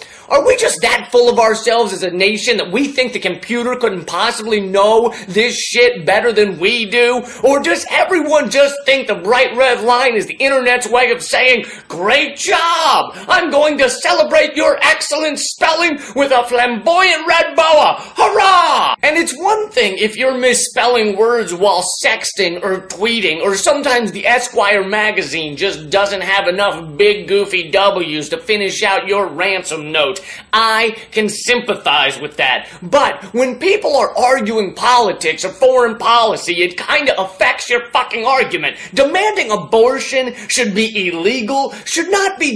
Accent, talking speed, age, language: American, 160 wpm, 30-49, English